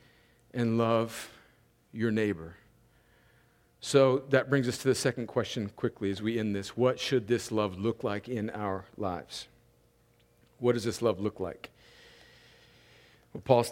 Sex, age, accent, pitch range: male, 50-69, American, 120-160 Hz